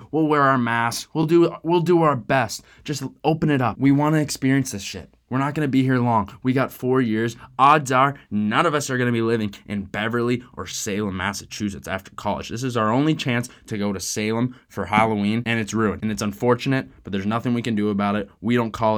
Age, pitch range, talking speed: 20-39, 110-140 Hz, 230 wpm